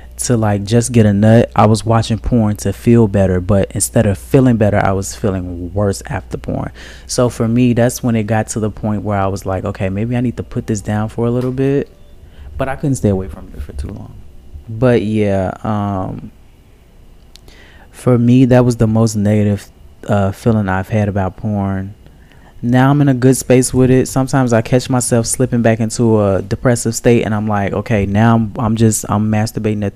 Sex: male